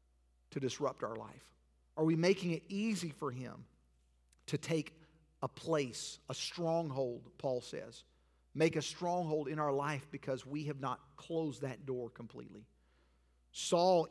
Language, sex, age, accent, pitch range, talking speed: English, male, 50-69, American, 120-170 Hz, 145 wpm